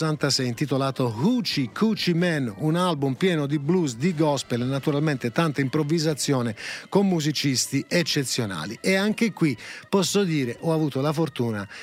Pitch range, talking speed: 130-165 Hz, 135 wpm